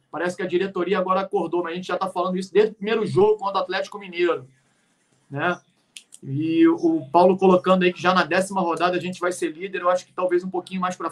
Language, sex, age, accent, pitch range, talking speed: Portuguese, male, 40-59, Brazilian, 180-230 Hz, 245 wpm